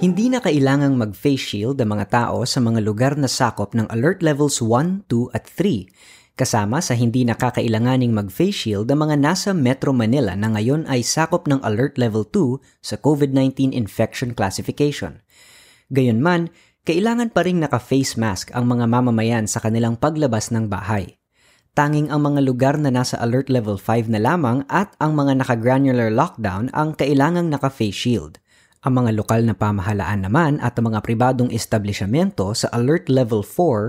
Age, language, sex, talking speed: 20-39, Filipino, female, 160 wpm